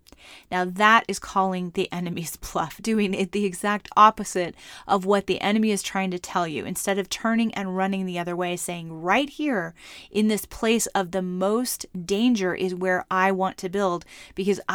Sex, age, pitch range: female, 30-49, 180-205 Hz